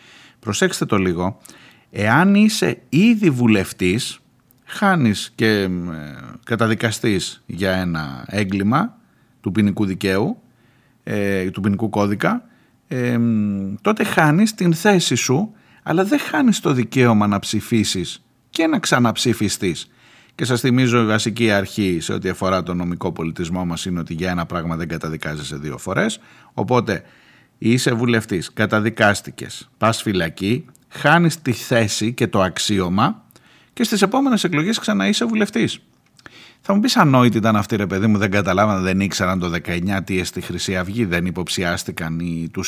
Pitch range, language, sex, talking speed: 95-140 Hz, Greek, male, 145 wpm